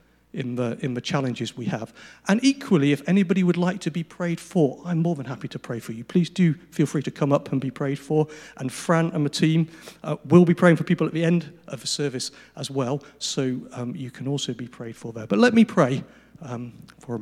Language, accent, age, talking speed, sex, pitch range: English, British, 40-59, 250 wpm, male, 115-170 Hz